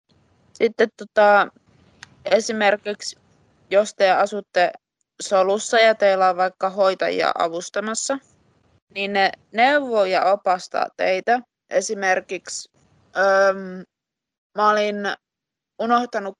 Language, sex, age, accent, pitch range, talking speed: Finnish, female, 20-39, native, 180-225 Hz, 85 wpm